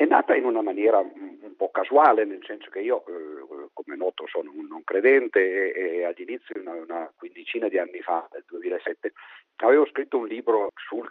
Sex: male